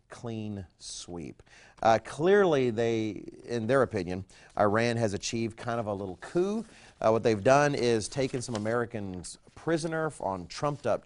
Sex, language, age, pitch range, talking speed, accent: male, English, 40-59, 105-130 Hz, 145 wpm, American